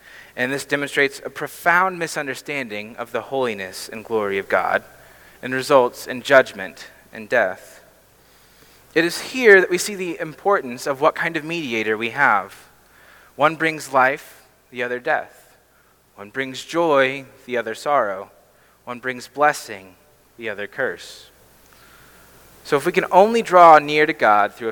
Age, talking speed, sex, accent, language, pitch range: 30-49, 150 wpm, male, American, English, 125-170 Hz